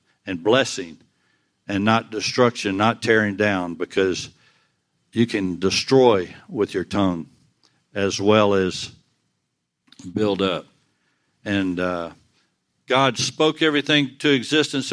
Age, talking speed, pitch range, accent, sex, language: 60-79, 110 wpm, 105-135 Hz, American, male, English